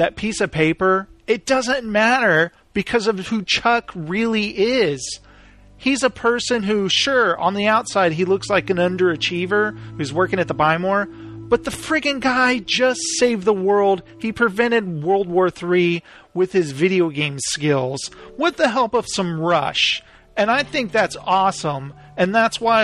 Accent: American